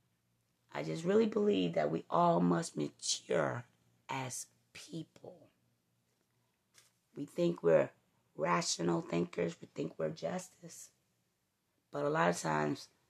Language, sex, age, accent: English, female, 30-49, American